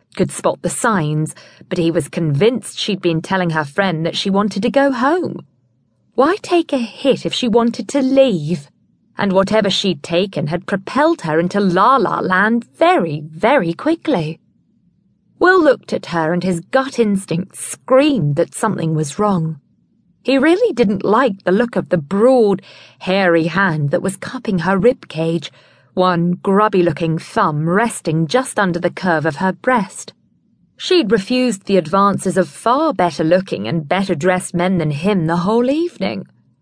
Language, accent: English, British